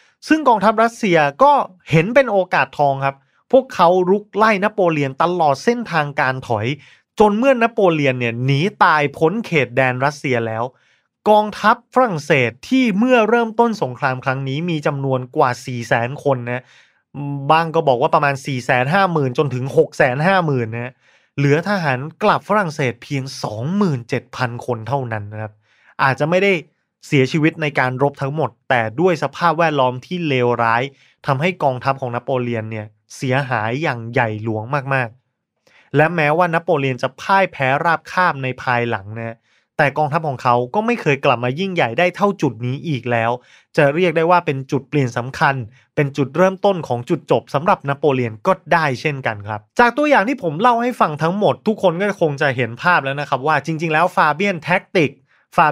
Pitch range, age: 130-185 Hz, 20-39